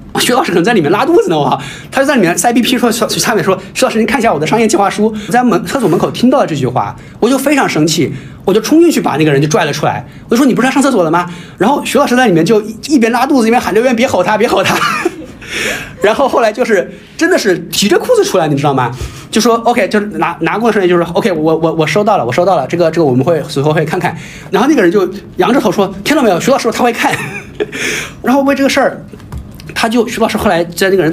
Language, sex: Chinese, male